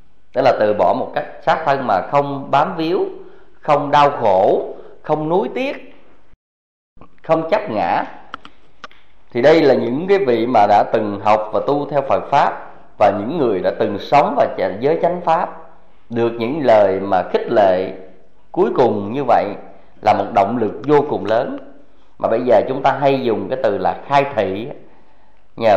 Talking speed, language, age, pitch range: 180 wpm, Vietnamese, 20-39, 105-145 Hz